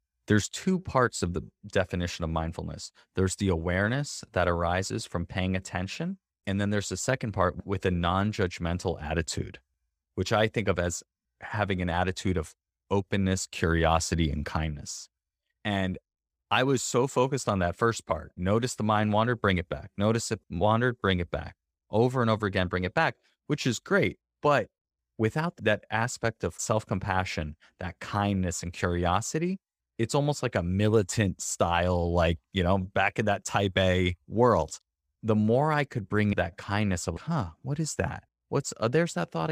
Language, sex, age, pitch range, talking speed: English, male, 20-39, 85-110 Hz, 170 wpm